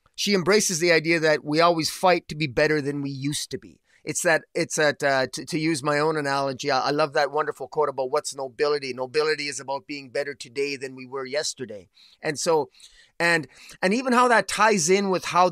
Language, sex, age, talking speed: English, male, 30-49, 220 wpm